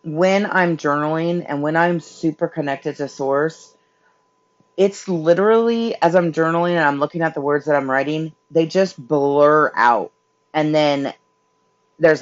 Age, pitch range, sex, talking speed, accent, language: 30-49, 135-165 Hz, female, 150 wpm, American, English